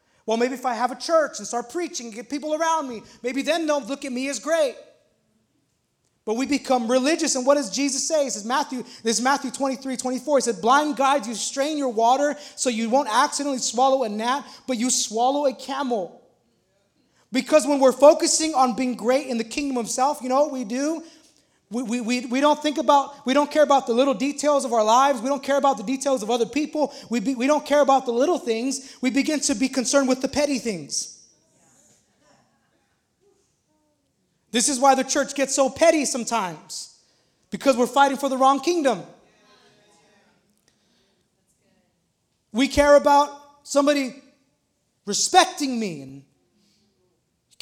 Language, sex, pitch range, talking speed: English, male, 245-285 Hz, 180 wpm